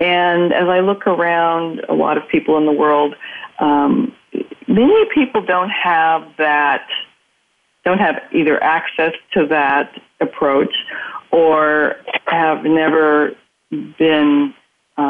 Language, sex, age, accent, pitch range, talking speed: English, female, 40-59, American, 145-190 Hz, 120 wpm